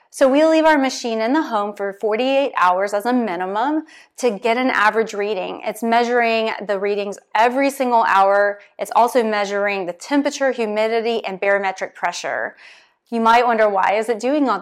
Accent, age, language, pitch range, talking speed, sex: American, 30-49, English, 200-250 Hz, 175 wpm, female